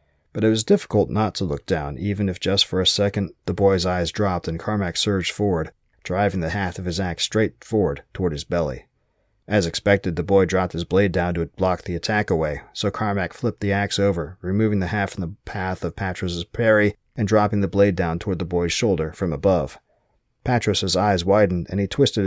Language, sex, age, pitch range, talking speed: English, male, 30-49, 85-105 Hz, 210 wpm